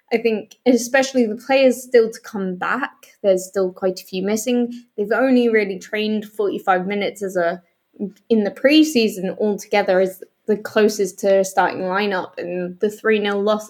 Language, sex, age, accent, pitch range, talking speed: English, female, 20-39, British, 195-245 Hz, 165 wpm